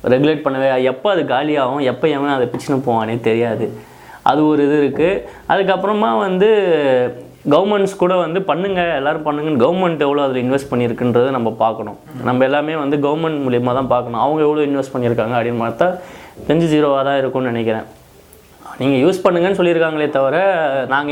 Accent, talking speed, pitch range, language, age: native, 155 wpm, 125-160 Hz, Tamil, 20-39